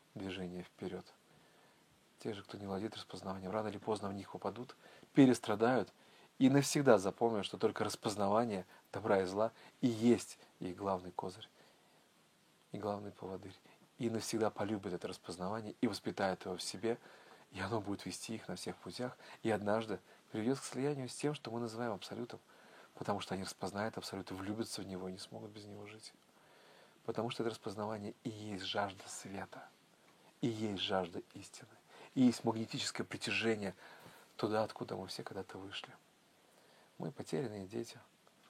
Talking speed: 155 wpm